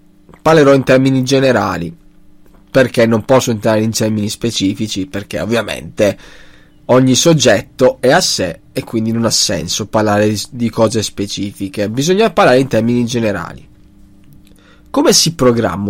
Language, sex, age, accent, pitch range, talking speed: Italian, male, 20-39, native, 105-165 Hz, 130 wpm